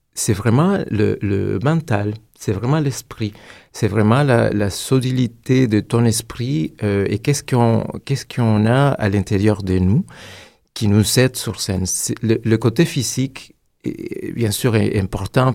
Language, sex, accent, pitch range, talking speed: French, male, French, 100-125 Hz, 155 wpm